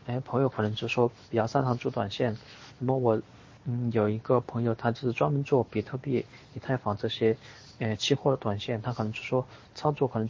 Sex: male